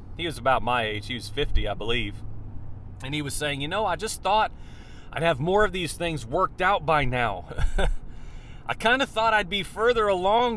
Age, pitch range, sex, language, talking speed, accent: 40-59, 130-200 Hz, male, English, 210 wpm, American